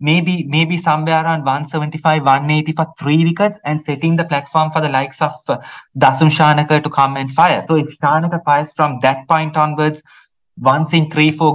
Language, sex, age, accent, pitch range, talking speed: English, male, 30-49, Indian, 125-155 Hz, 185 wpm